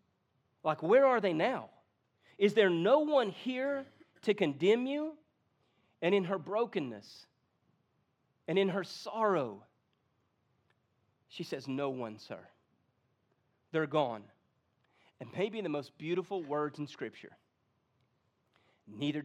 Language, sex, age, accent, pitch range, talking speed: English, male, 40-59, American, 130-160 Hz, 115 wpm